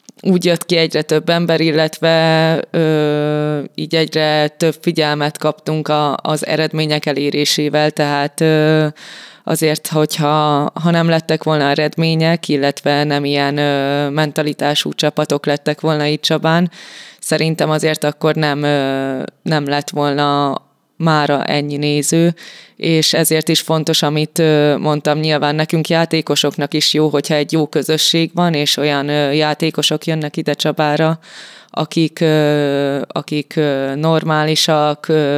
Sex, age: female, 20-39